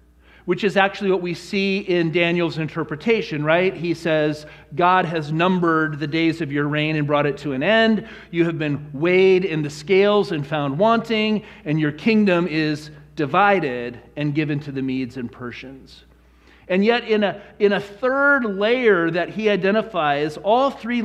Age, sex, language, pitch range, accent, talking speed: 40-59, male, English, 150-190 Hz, American, 175 wpm